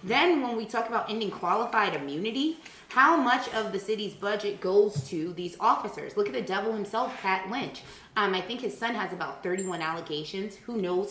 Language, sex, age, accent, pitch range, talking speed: English, female, 20-39, American, 160-205 Hz, 195 wpm